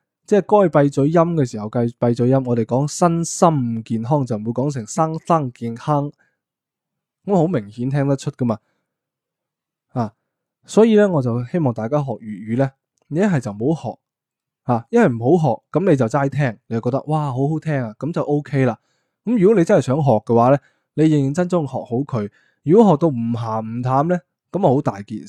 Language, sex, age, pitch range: Chinese, male, 20-39, 120-155 Hz